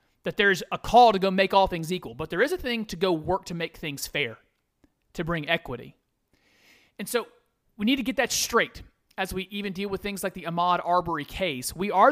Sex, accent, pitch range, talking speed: male, American, 165-230 Hz, 230 wpm